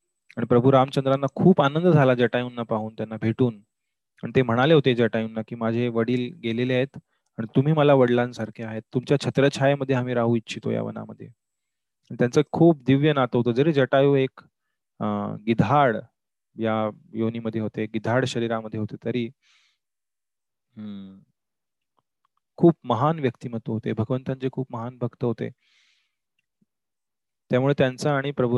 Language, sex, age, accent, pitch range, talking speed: Marathi, male, 30-49, native, 115-140 Hz, 120 wpm